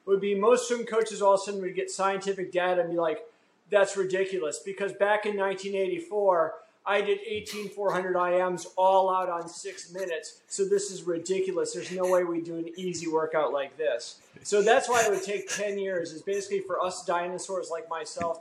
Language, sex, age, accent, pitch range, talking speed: English, male, 30-49, American, 170-200 Hz, 200 wpm